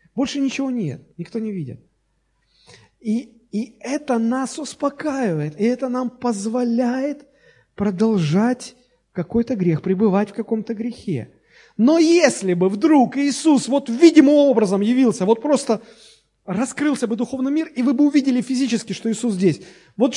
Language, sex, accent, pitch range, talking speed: Russian, male, native, 145-245 Hz, 135 wpm